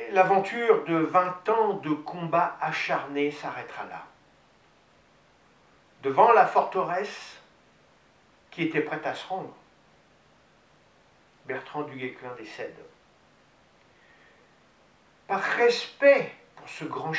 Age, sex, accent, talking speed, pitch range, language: 50-69, male, French, 90 wpm, 150-205 Hz, French